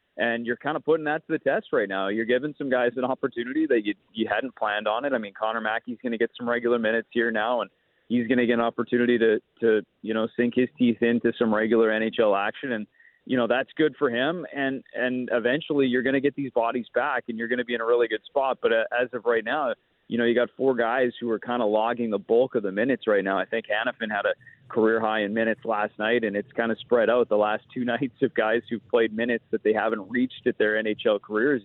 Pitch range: 110-125 Hz